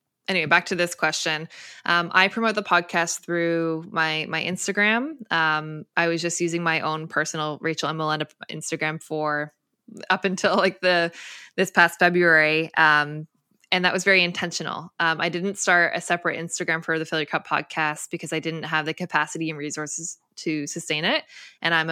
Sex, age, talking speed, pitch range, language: female, 20-39, 180 wpm, 155-180 Hz, English